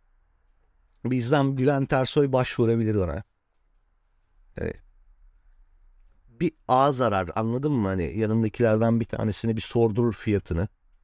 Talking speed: 100 wpm